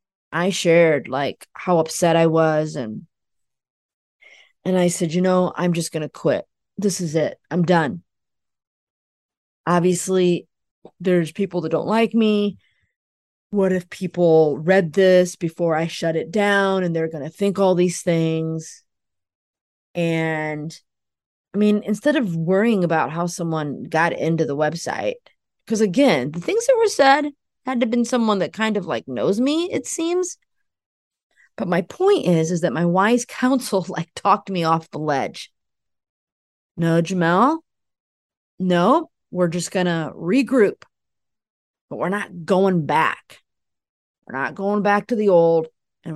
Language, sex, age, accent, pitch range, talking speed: English, female, 20-39, American, 160-205 Hz, 150 wpm